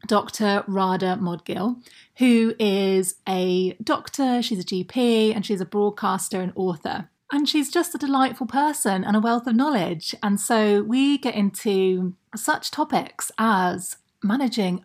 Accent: British